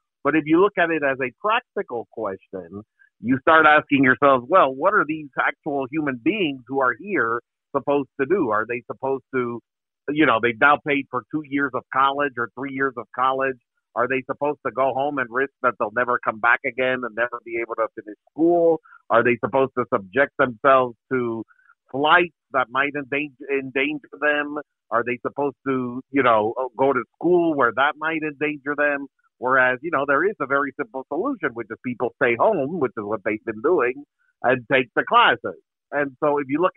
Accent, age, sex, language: American, 50-69, male, English